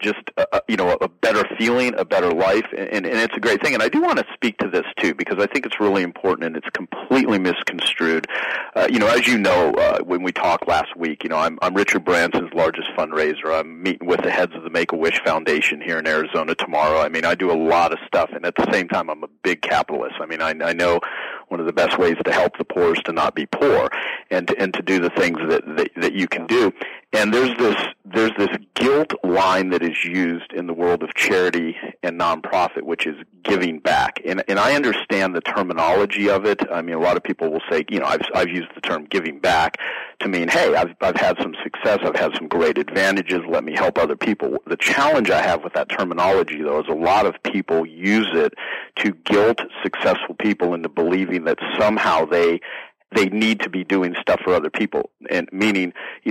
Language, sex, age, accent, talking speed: English, male, 40-59, American, 230 wpm